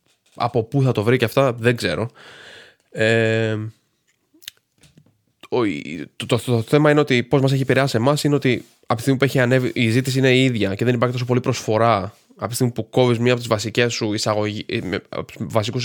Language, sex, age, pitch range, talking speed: Greek, male, 20-39, 110-130 Hz, 190 wpm